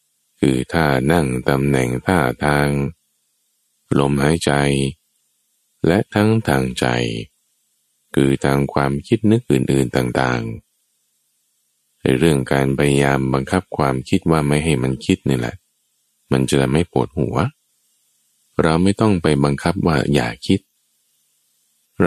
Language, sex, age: Thai, male, 20-39